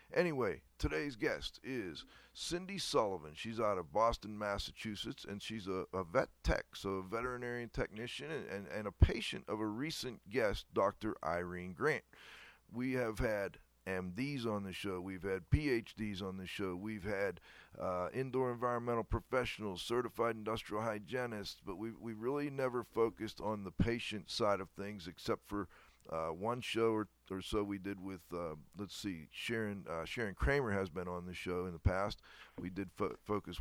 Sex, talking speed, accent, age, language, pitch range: male, 175 wpm, American, 50-69, English, 90-115 Hz